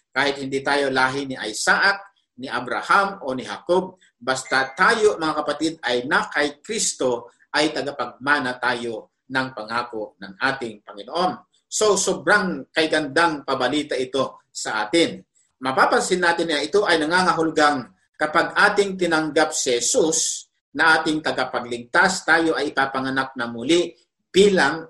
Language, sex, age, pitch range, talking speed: Filipino, male, 50-69, 135-180 Hz, 130 wpm